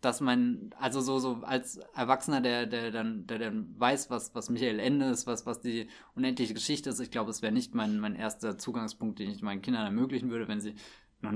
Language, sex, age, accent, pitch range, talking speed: German, male, 20-39, German, 110-140 Hz, 220 wpm